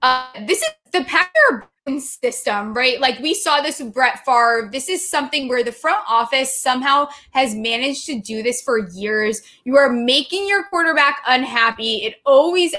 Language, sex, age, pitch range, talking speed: English, female, 20-39, 245-330 Hz, 175 wpm